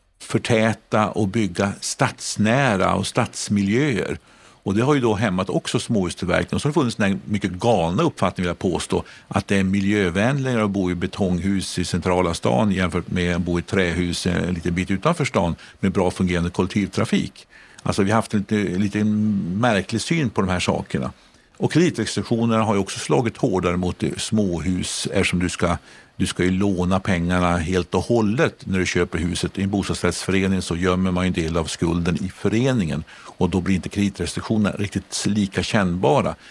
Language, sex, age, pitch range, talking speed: Swedish, male, 50-69, 90-105 Hz, 180 wpm